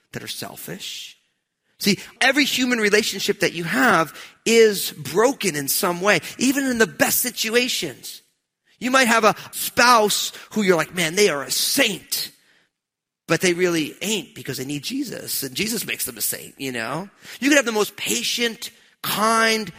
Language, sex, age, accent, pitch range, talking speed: English, male, 40-59, American, 150-220 Hz, 170 wpm